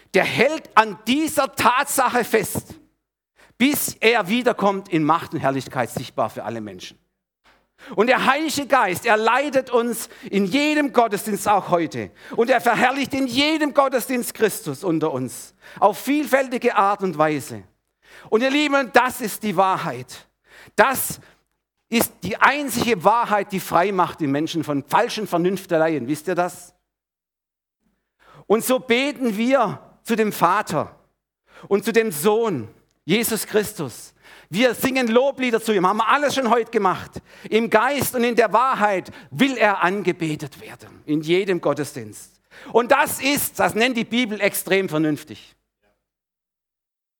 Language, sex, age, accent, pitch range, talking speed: German, male, 50-69, German, 155-240 Hz, 140 wpm